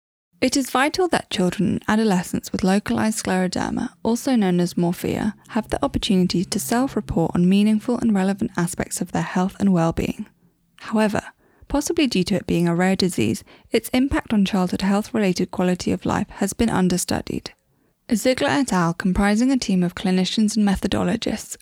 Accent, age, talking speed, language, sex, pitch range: British, 10-29, 165 wpm, English, female, 185-230 Hz